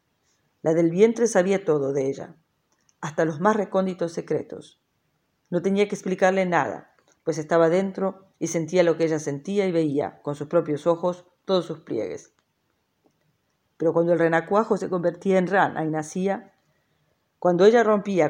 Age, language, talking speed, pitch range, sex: 40-59, French, 155 wpm, 160-185 Hz, female